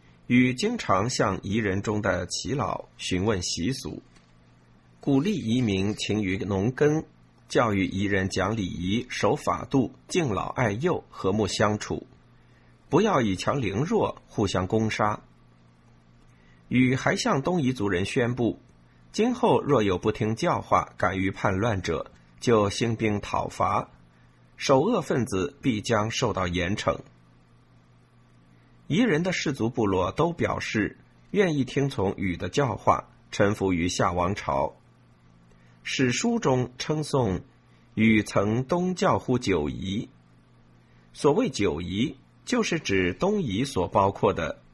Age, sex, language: 50-69, male, Chinese